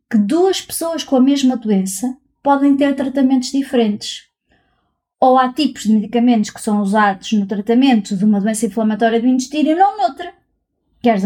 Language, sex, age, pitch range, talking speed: Portuguese, female, 20-39, 225-275 Hz, 165 wpm